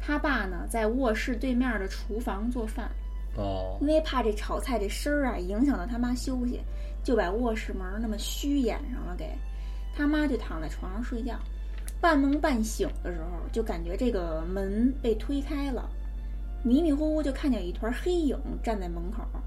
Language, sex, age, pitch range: Chinese, female, 20-39, 210-290 Hz